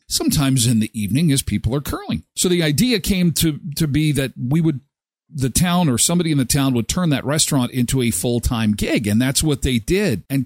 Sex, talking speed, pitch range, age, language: male, 225 wpm, 115-155 Hz, 50-69, English